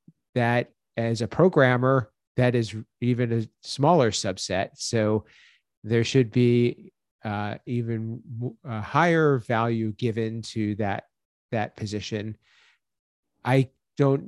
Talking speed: 110 wpm